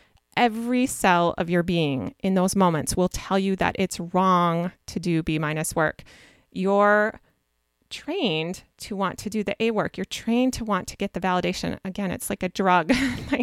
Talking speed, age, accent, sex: 190 wpm, 30-49, American, female